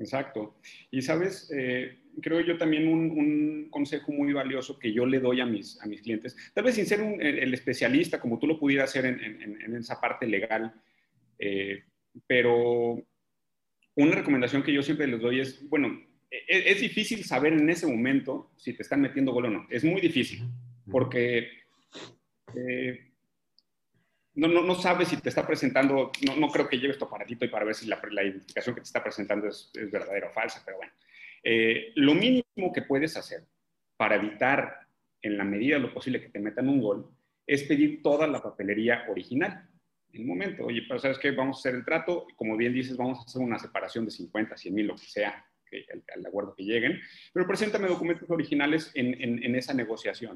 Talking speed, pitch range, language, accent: 200 wpm, 120-160 Hz, Spanish, Mexican